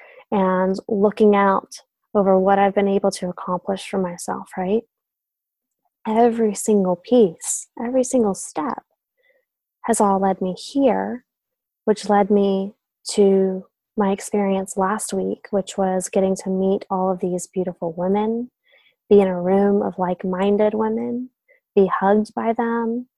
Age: 20-39